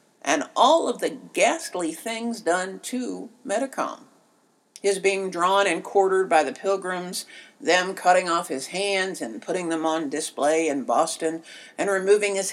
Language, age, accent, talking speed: English, 60-79, American, 155 wpm